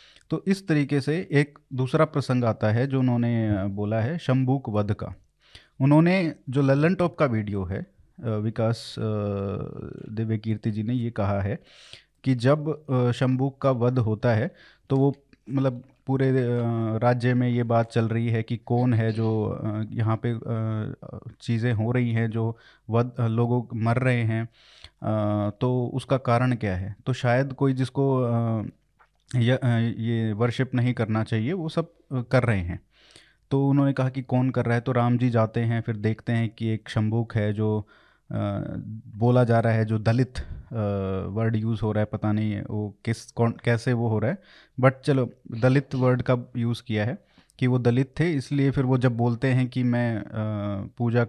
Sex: male